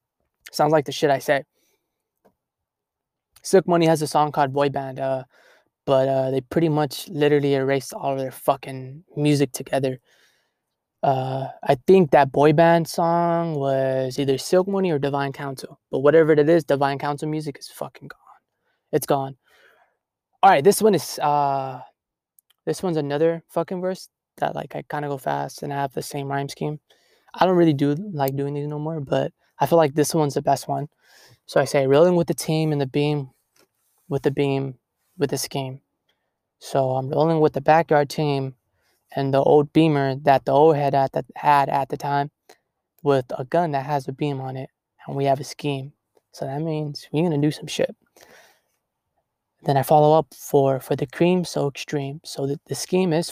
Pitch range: 135-155 Hz